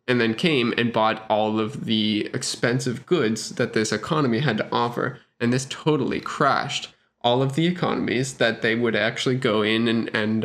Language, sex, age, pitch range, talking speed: English, male, 20-39, 110-130 Hz, 185 wpm